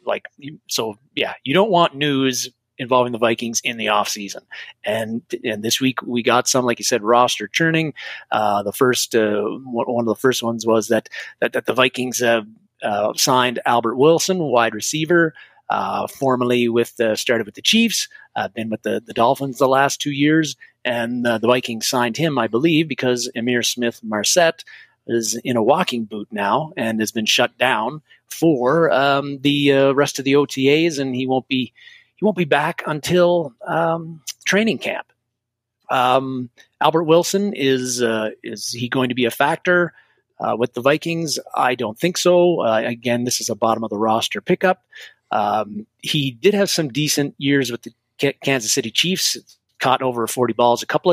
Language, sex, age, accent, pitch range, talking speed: English, male, 30-49, American, 120-155 Hz, 185 wpm